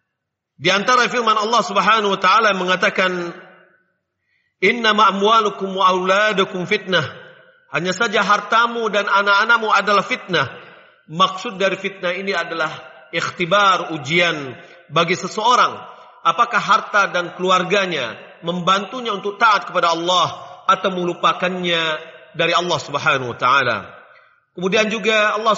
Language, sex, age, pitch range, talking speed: Indonesian, male, 40-59, 175-220 Hz, 115 wpm